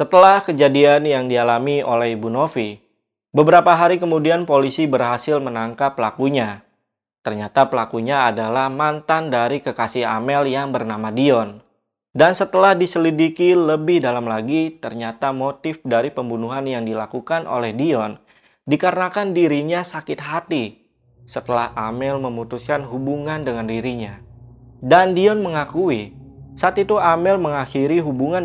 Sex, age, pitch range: male, 20-39, 115-150 Hz